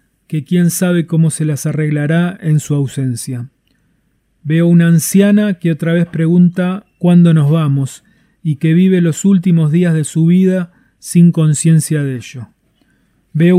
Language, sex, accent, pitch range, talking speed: Spanish, male, Argentinian, 155-185 Hz, 150 wpm